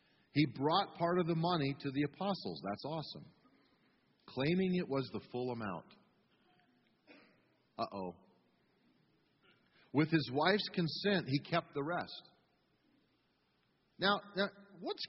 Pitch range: 160-220 Hz